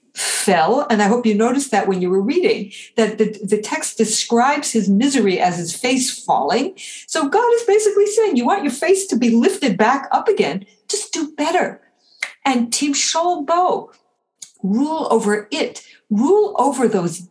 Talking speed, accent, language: 170 wpm, American, English